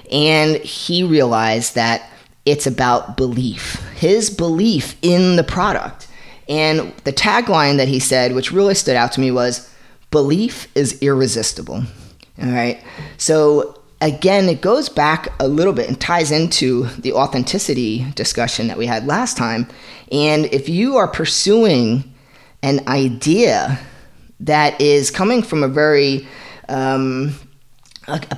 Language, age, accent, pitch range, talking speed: English, 30-49, American, 130-165 Hz, 135 wpm